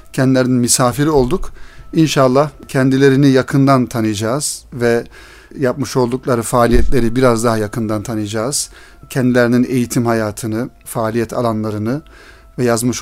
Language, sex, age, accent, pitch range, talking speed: Turkish, male, 40-59, native, 120-145 Hz, 100 wpm